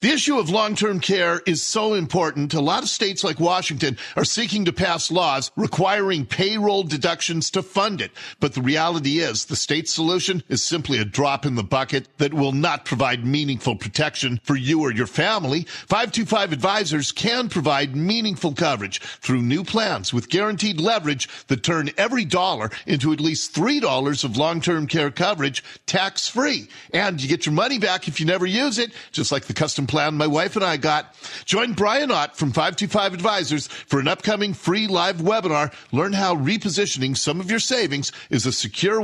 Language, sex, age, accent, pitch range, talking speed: English, male, 50-69, American, 145-205 Hz, 180 wpm